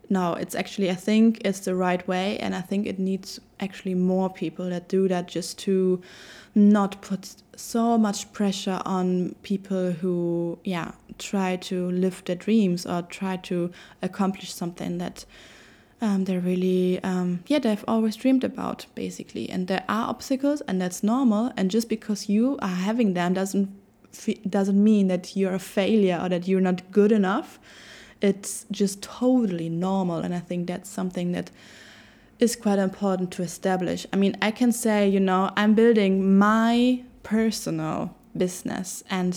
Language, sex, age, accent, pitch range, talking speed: English, female, 20-39, German, 180-210 Hz, 165 wpm